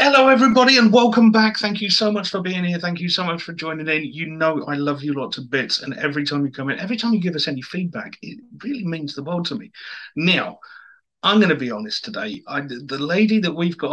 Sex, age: male, 40-59